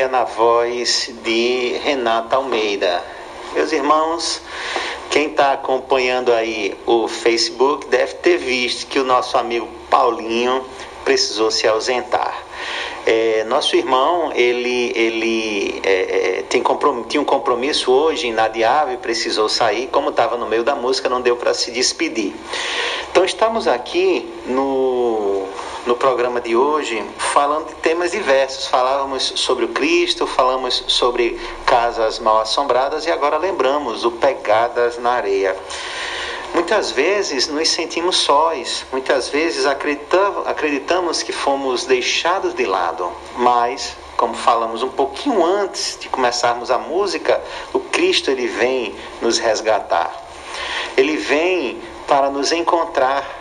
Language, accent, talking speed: Portuguese, Brazilian, 120 wpm